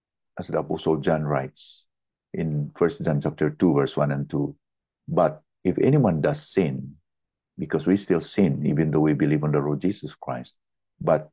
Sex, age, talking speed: male, 50-69, 175 wpm